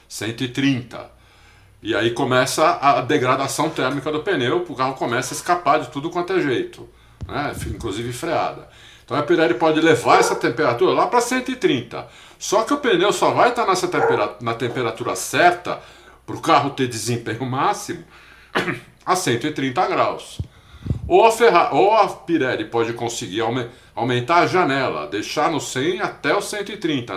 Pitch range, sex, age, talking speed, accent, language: 125-175 Hz, male, 50-69, 150 wpm, Brazilian, Portuguese